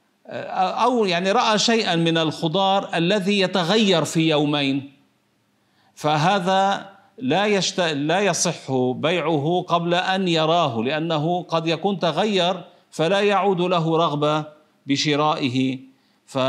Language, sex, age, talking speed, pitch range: Arabic, male, 50-69, 100 wpm, 145-195 Hz